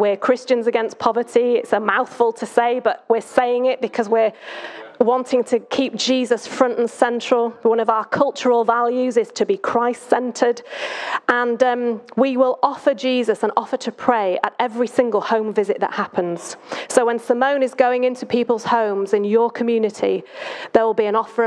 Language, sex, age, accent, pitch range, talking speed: English, female, 30-49, British, 210-250 Hz, 180 wpm